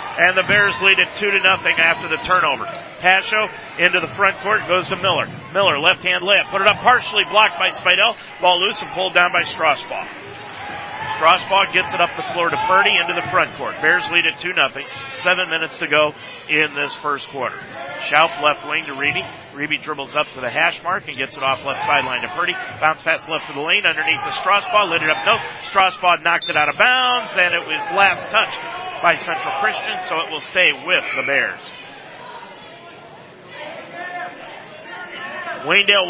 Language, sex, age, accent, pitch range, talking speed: English, male, 40-59, American, 140-185 Hz, 195 wpm